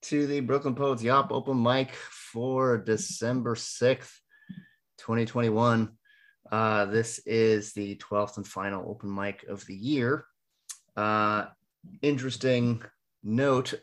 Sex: male